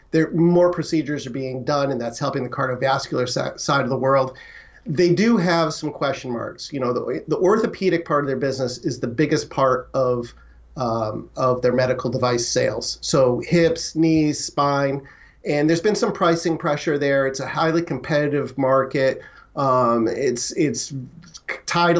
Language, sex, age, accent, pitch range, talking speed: English, male, 40-59, American, 130-150 Hz, 170 wpm